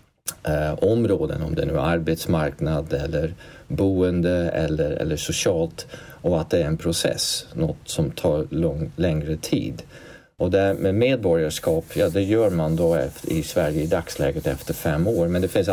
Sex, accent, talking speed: male, native, 155 wpm